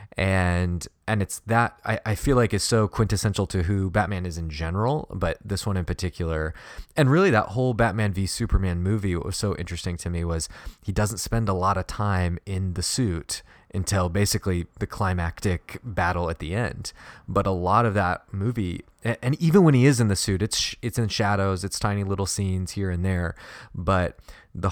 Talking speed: 200 wpm